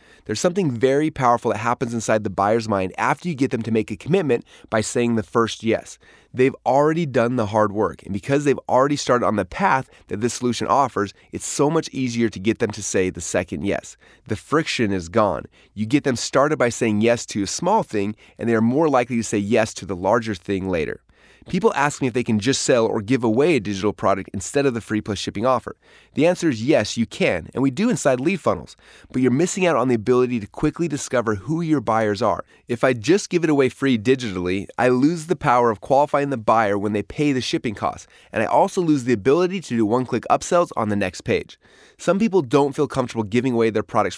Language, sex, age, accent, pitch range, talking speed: English, male, 30-49, American, 110-140 Hz, 235 wpm